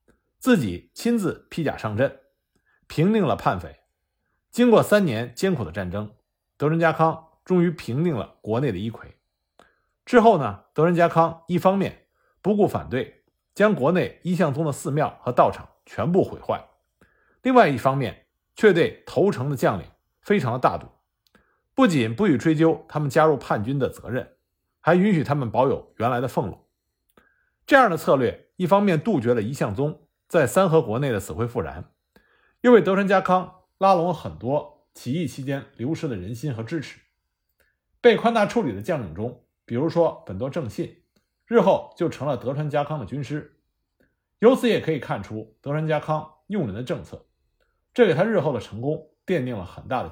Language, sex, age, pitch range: Chinese, male, 50-69, 120-185 Hz